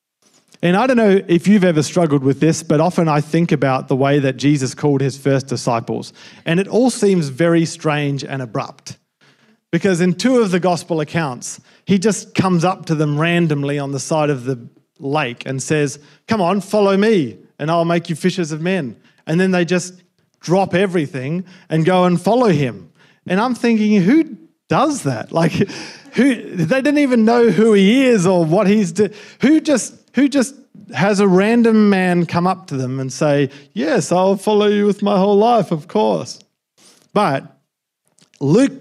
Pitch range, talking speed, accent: 145-200 Hz, 185 wpm, Australian